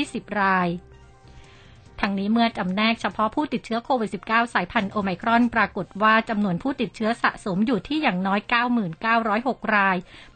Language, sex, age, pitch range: Thai, female, 60-79, 195-235 Hz